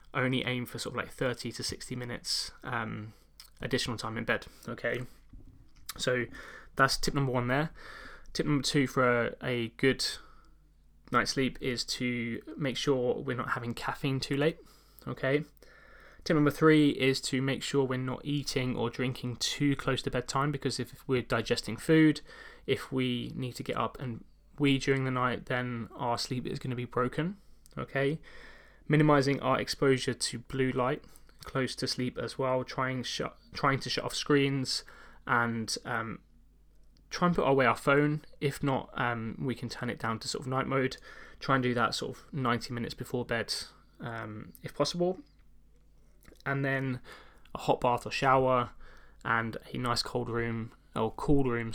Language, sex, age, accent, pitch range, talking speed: English, male, 20-39, British, 120-135 Hz, 175 wpm